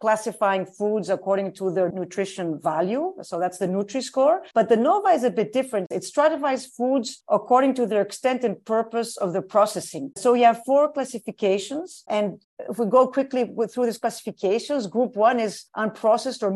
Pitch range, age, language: 195-245 Hz, 50-69, English